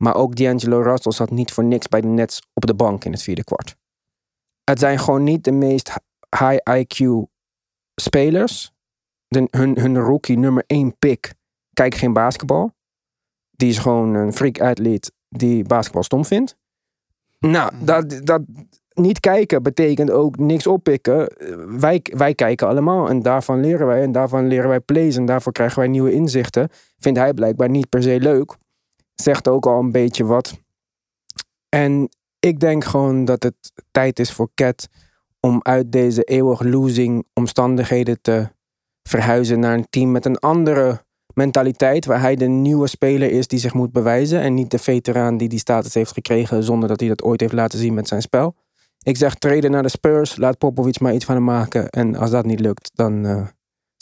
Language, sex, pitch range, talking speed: Dutch, male, 115-140 Hz, 175 wpm